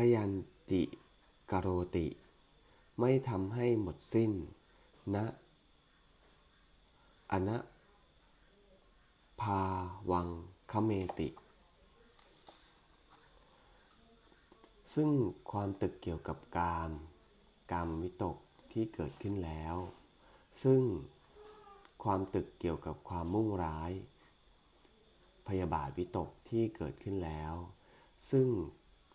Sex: male